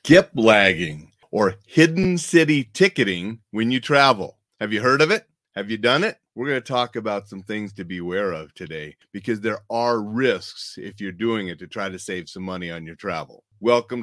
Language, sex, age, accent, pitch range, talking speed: English, male, 40-59, American, 110-130 Hz, 205 wpm